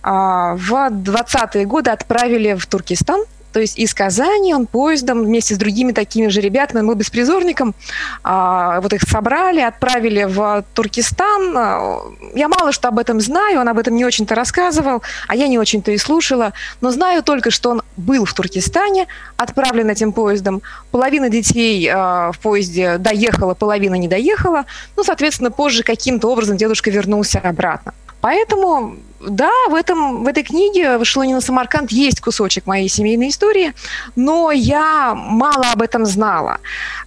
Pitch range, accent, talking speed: 210-270 Hz, native, 150 wpm